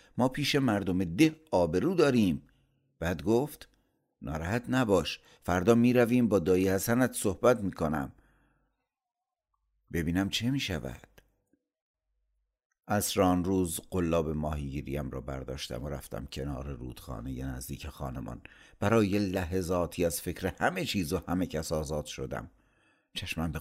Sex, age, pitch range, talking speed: male, 60-79, 70-100 Hz, 120 wpm